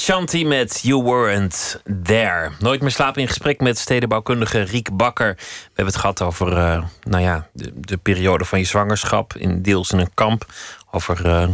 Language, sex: Dutch, male